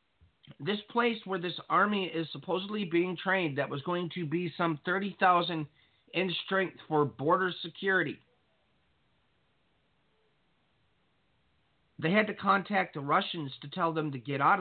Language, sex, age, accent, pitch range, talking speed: English, male, 50-69, American, 140-180 Hz, 135 wpm